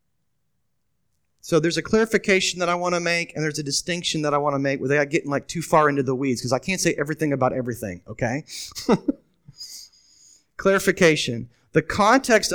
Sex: male